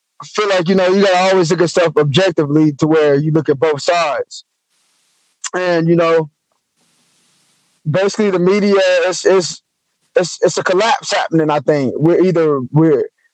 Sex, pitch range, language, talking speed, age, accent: male, 165-205 Hz, English, 160 wpm, 20-39, American